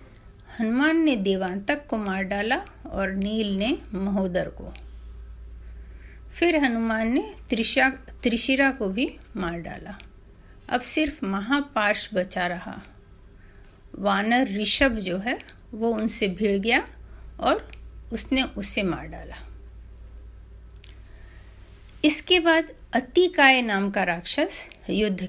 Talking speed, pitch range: 105 wpm, 180-255 Hz